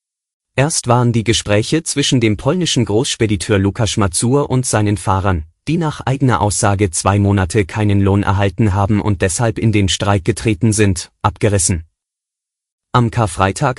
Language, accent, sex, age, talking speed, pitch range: German, German, male, 30-49, 145 wpm, 100-130 Hz